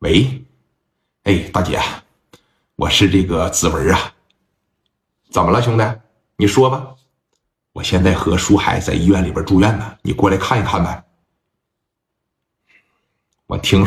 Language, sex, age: Chinese, male, 50-69